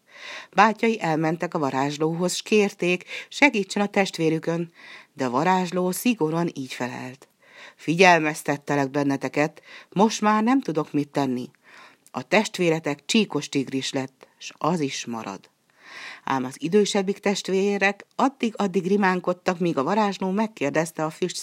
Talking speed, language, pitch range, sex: 120 wpm, Hungarian, 145-195 Hz, female